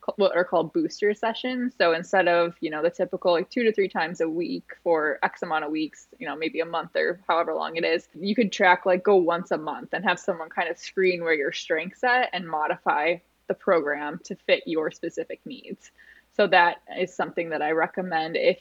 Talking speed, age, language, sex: 225 wpm, 20-39, English, female